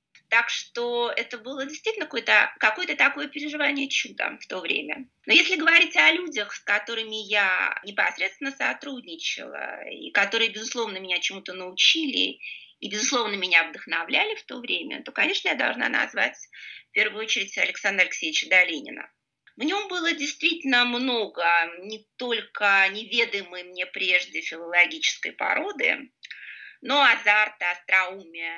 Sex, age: female, 30-49